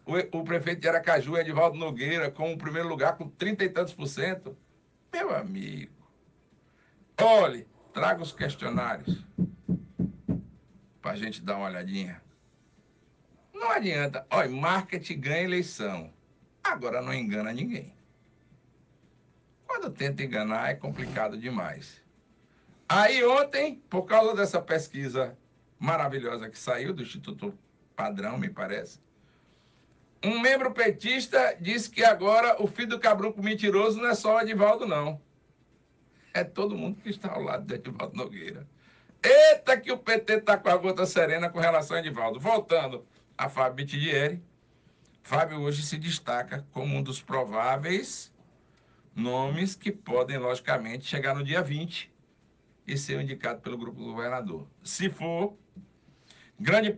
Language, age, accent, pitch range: Portuguese, 60-79, Brazilian, 140-205 Hz